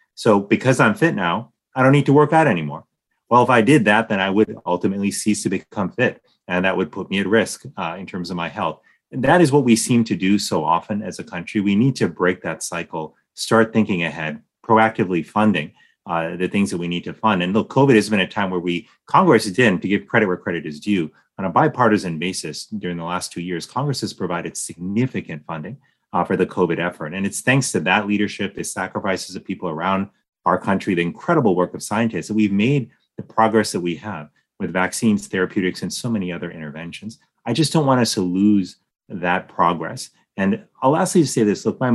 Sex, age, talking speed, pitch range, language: male, 30-49, 225 wpm, 90-115 Hz, English